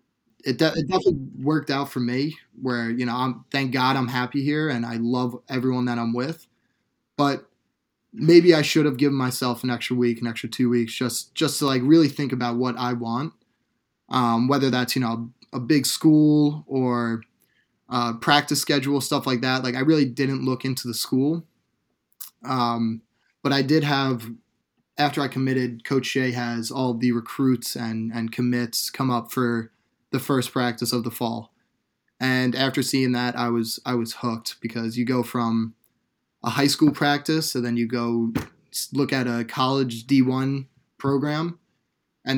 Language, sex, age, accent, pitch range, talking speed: English, male, 20-39, American, 120-140 Hz, 180 wpm